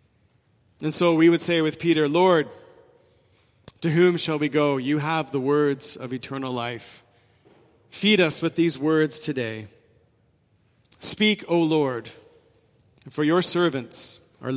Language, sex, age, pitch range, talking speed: English, male, 40-59, 130-180 Hz, 135 wpm